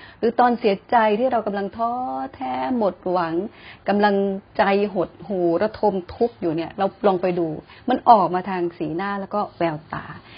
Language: Thai